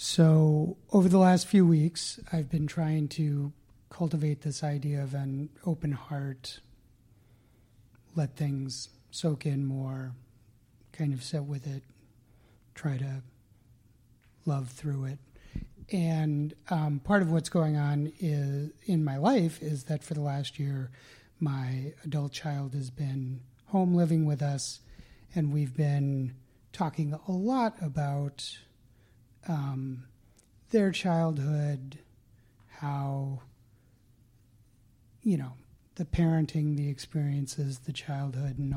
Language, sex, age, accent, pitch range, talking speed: English, male, 30-49, American, 125-155 Hz, 120 wpm